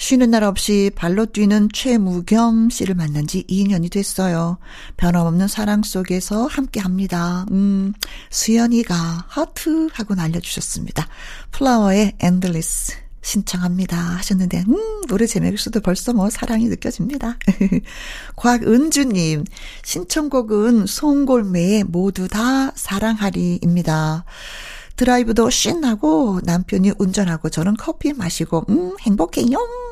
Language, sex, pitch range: Korean, female, 185-245 Hz